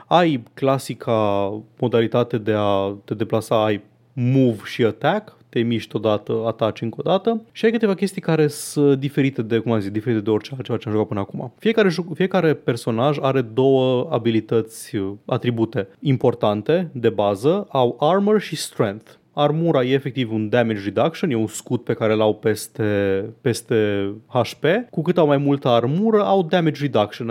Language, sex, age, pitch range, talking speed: Romanian, male, 30-49, 115-150 Hz, 160 wpm